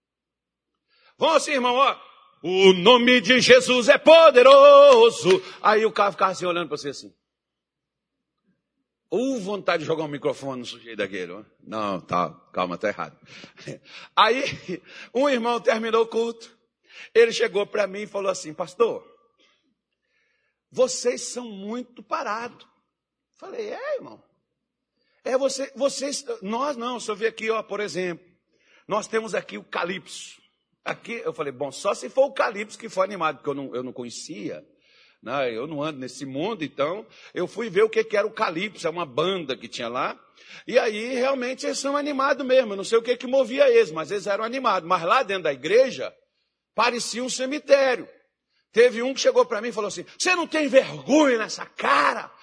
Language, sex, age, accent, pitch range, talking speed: Portuguese, male, 60-79, Brazilian, 190-275 Hz, 175 wpm